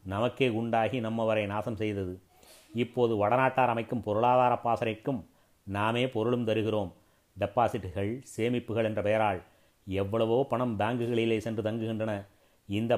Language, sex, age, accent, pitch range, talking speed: Tamil, male, 30-49, native, 105-120 Hz, 105 wpm